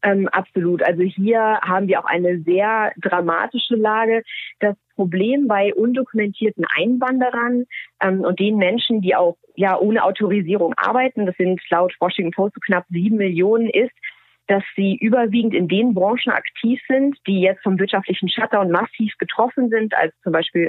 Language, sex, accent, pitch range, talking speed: German, female, German, 185-230 Hz, 155 wpm